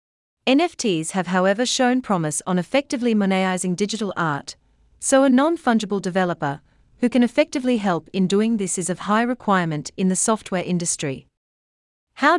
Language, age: English, 40-59